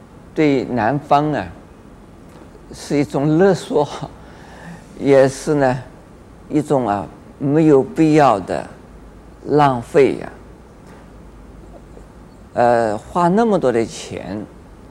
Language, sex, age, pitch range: Chinese, male, 50-69, 105-155 Hz